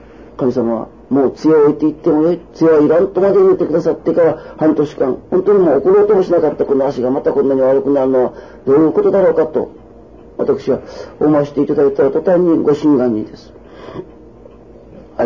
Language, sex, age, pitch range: Japanese, male, 40-59, 135-205 Hz